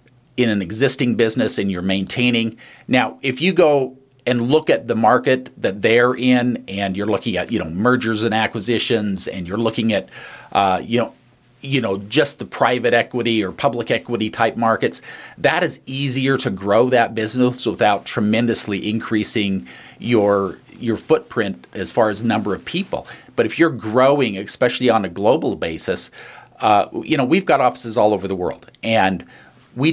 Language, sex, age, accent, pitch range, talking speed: English, male, 50-69, American, 105-125 Hz, 170 wpm